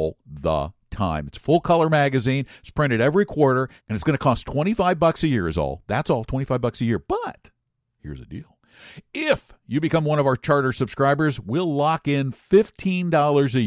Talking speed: 200 wpm